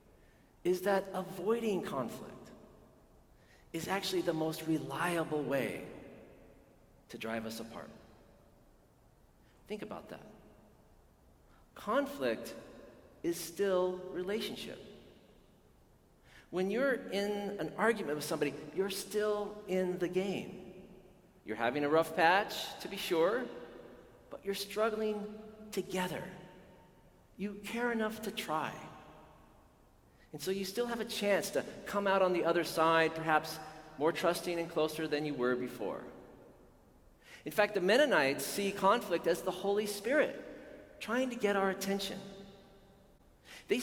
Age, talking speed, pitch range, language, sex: 40-59, 120 wpm, 165-205 Hz, English, male